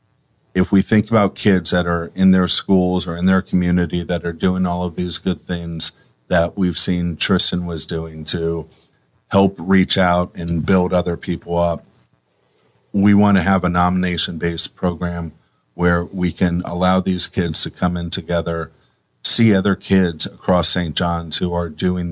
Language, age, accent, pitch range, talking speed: English, 50-69, American, 85-95 Hz, 170 wpm